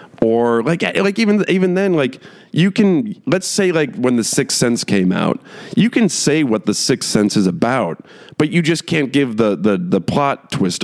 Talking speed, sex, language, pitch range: 205 wpm, male, English, 110-170 Hz